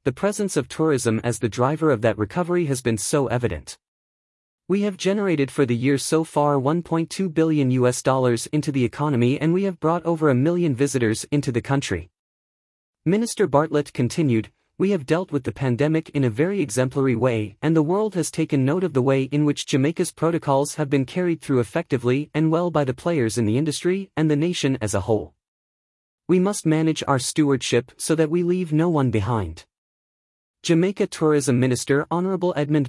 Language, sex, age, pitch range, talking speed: English, male, 30-49, 125-165 Hz, 190 wpm